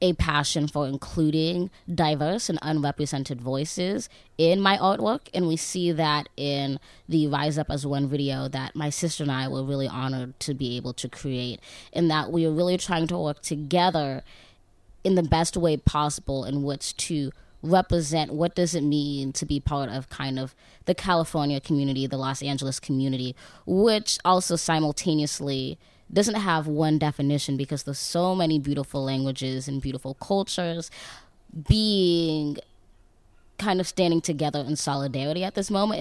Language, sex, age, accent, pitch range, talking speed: English, female, 20-39, American, 135-165 Hz, 160 wpm